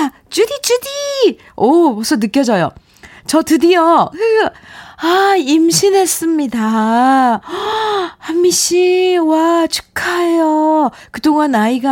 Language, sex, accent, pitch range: Korean, female, native, 180-275 Hz